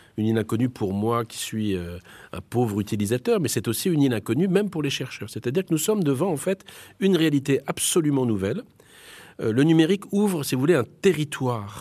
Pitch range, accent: 110-150 Hz, French